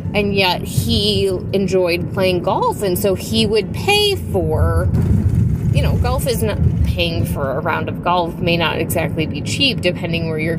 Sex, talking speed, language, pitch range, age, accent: female, 175 wpm, English, 115-185 Hz, 20-39, American